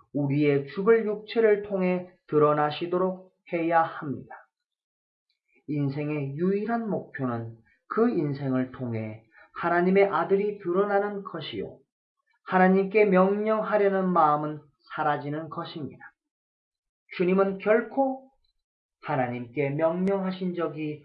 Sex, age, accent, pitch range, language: male, 40-59, native, 150-205 Hz, Korean